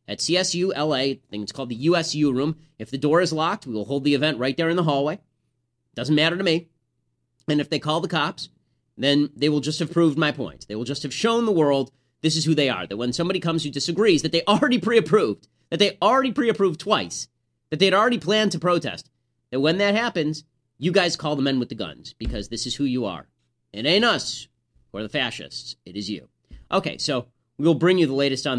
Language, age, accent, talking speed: English, 30-49, American, 235 wpm